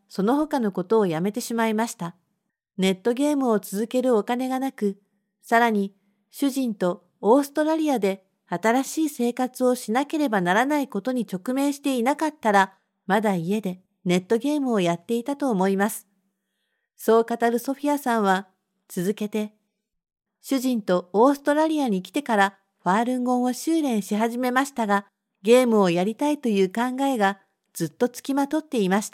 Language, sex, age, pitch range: Japanese, female, 50-69, 195-265 Hz